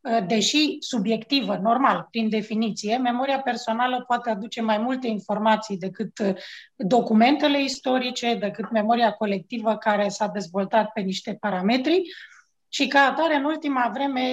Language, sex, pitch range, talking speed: Romanian, female, 215-255 Hz, 125 wpm